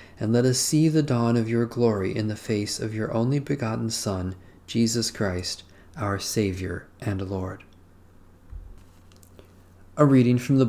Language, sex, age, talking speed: English, male, 40-59, 150 wpm